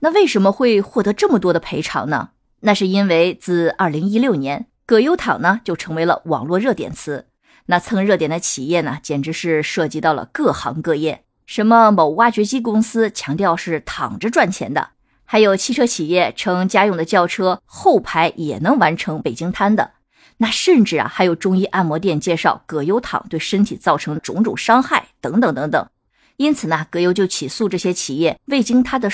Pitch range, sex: 160-225 Hz, female